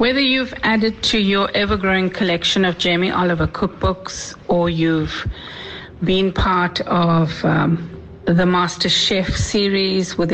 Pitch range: 170-210 Hz